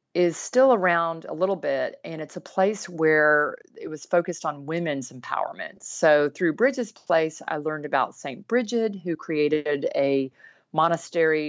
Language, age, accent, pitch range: English, 40-59, American, 140-170 Hz